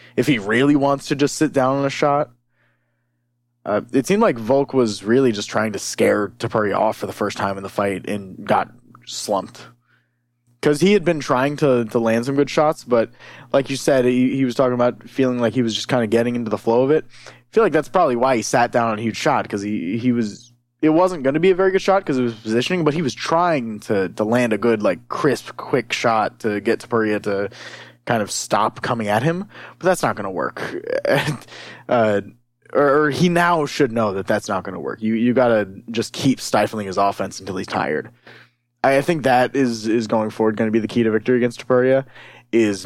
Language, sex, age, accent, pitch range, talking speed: English, male, 20-39, American, 110-135 Hz, 235 wpm